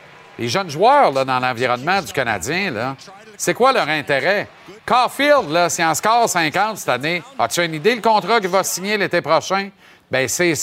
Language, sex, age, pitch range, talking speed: French, male, 50-69, 155-225 Hz, 180 wpm